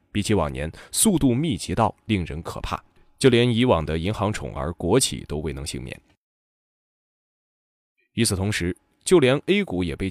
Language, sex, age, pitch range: Chinese, male, 20-39, 90-145 Hz